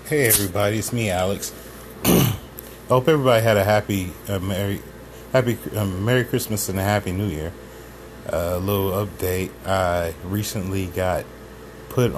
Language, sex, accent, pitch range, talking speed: English, male, American, 85-105 Hz, 145 wpm